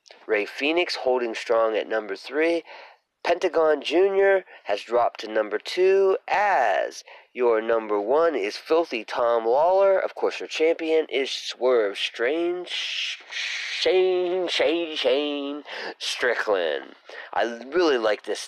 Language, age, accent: English, 30-49, American